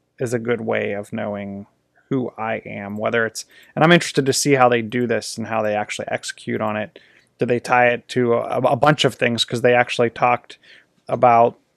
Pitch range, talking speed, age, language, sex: 115-135 Hz, 215 wpm, 30-49, English, male